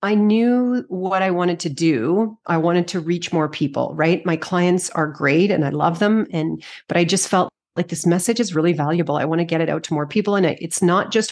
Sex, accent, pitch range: female, American, 155-185 Hz